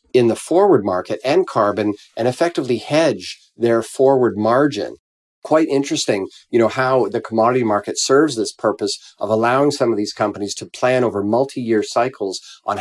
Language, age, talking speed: English, 40-59, 170 wpm